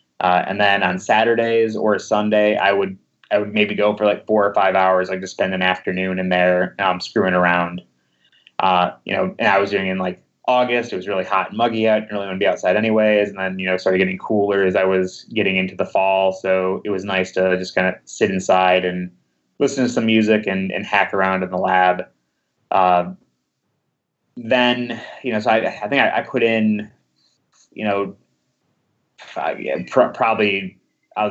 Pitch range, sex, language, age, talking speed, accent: 95-110 Hz, male, English, 20-39, 210 wpm, American